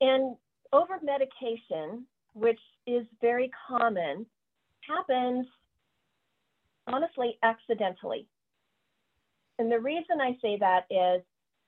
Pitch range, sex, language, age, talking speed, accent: 215-265 Hz, female, English, 40-59, 80 wpm, American